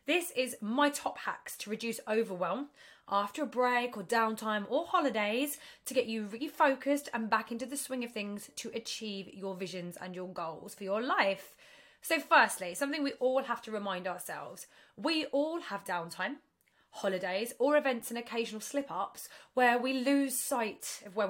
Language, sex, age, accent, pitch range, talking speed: English, female, 20-39, British, 210-270 Hz, 175 wpm